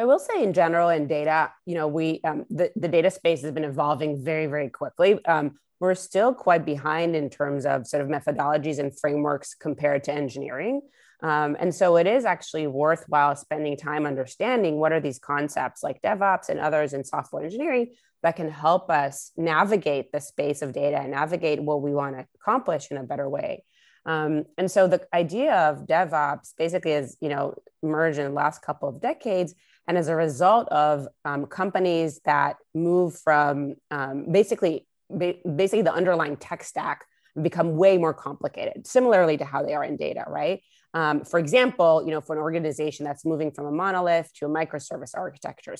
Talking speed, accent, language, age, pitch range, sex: 185 wpm, American, English, 30-49, 145-175 Hz, female